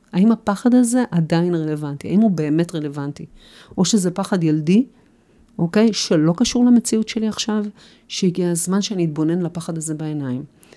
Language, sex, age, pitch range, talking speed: Hebrew, female, 40-59, 165-215 Hz, 145 wpm